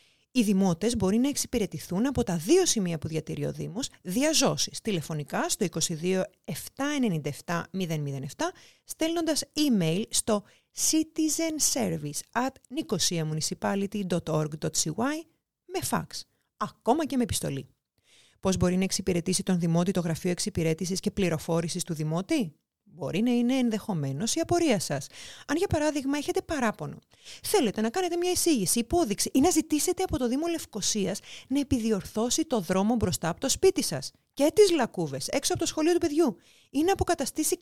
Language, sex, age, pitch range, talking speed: Greek, female, 30-49, 170-280 Hz, 140 wpm